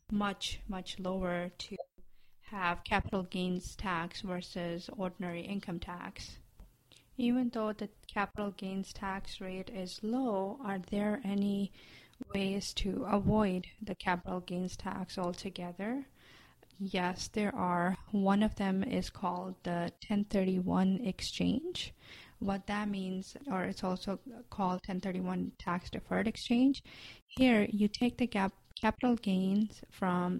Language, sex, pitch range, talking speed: English, female, 185-210 Hz, 120 wpm